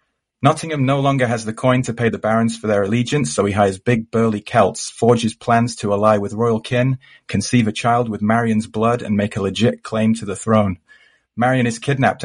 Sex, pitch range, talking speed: male, 105-125 Hz, 210 wpm